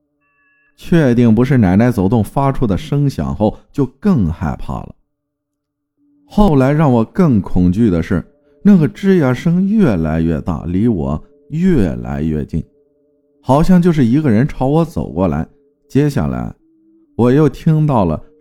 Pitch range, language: 95-150 Hz, Chinese